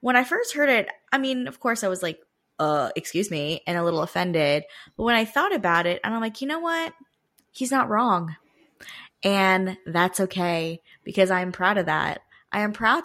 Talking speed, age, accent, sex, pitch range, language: 205 wpm, 20-39, American, female, 160-195 Hz, English